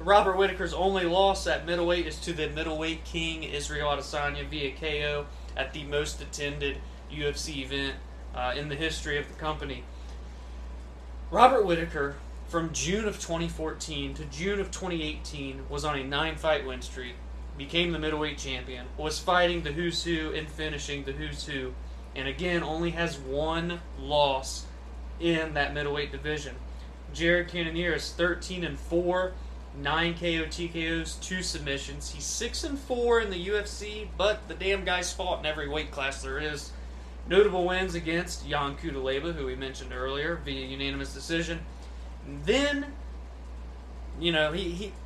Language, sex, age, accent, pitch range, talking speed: English, male, 20-39, American, 140-170 Hz, 150 wpm